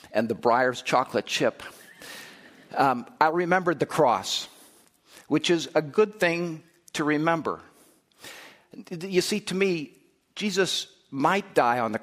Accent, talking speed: American, 130 wpm